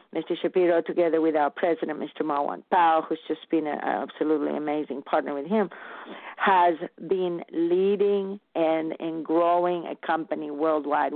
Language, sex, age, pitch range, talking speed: English, female, 50-69, 160-200 Hz, 145 wpm